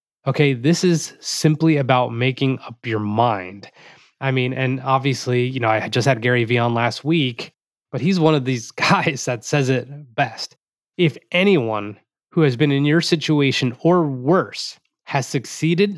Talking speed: 170 wpm